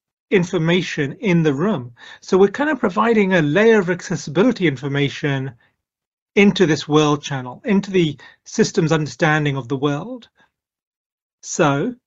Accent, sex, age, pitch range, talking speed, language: British, male, 30-49, 150-210 Hz, 130 wpm, English